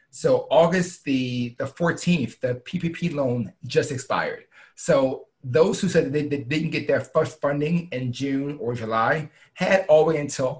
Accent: American